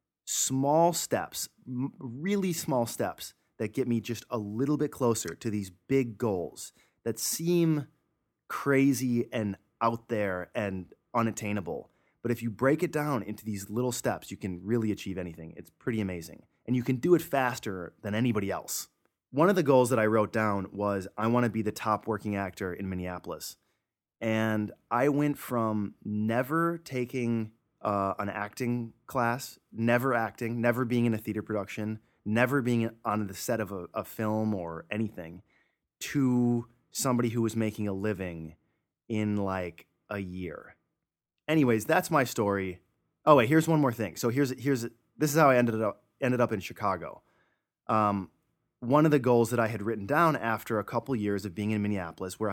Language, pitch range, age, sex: English, 105-125 Hz, 30-49, male